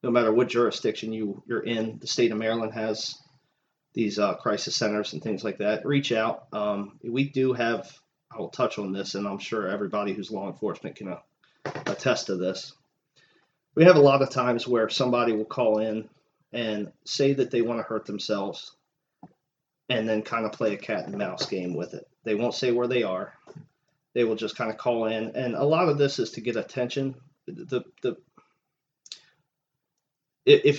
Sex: male